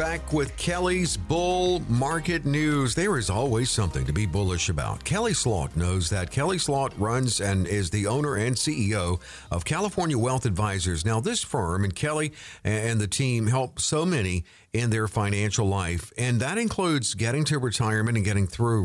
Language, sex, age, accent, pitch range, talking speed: English, male, 50-69, American, 100-150 Hz, 175 wpm